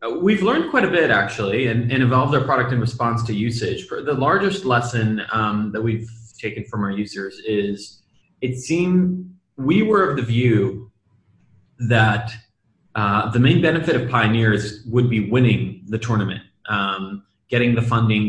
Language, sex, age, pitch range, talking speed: English, male, 30-49, 110-145 Hz, 160 wpm